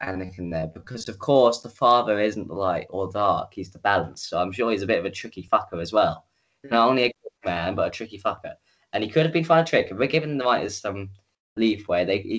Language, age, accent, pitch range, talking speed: English, 10-29, British, 90-115 Hz, 255 wpm